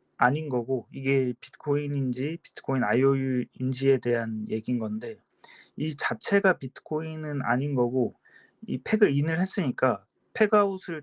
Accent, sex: native, male